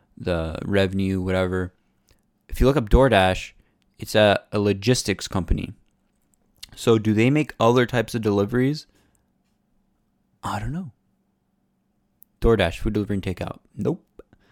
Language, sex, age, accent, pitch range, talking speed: English, male, 20-39, American, 100-120 Hz, 125 wpm